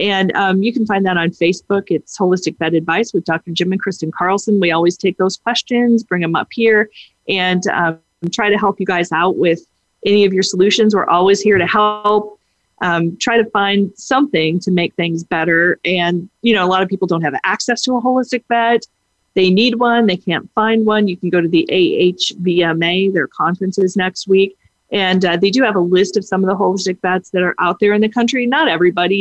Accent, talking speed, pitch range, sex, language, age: American, 220 wpm, 175-220 Hz, female, English, 30-49